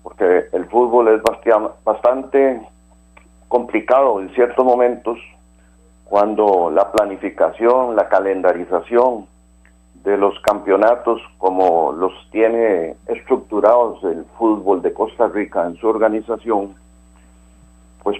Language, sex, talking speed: Spanish, male, 100 wpm